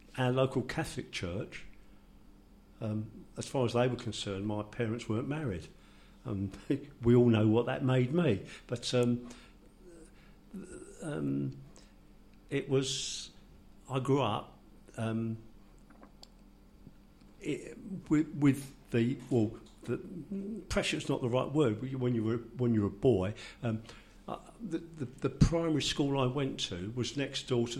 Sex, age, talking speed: male, 50-69, 135 wpm